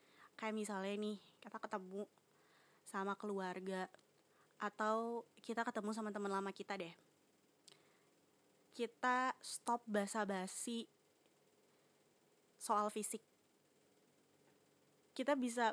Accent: native